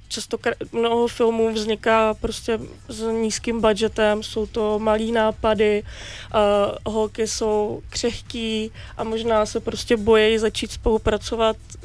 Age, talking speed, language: 20-39, 115 wpm, Czech